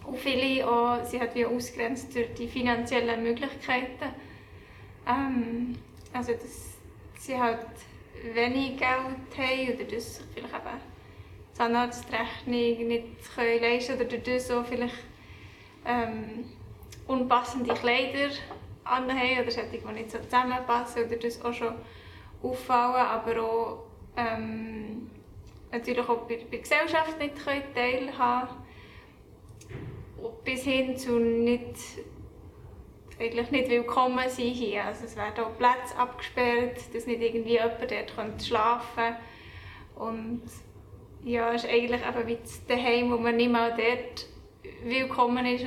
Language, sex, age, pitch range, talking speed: German, female, 20-39, 230-250 Hz, 125 wpm